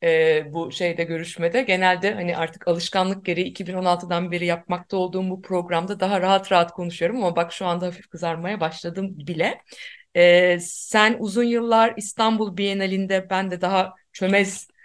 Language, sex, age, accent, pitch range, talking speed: Turkish, female, 50-69, native, 170-220 Hz, 150 wpm